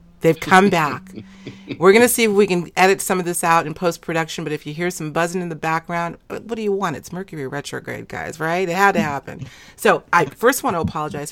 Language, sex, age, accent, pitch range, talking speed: English, female, 40-59, American, 155-190 Hz, 240 wpm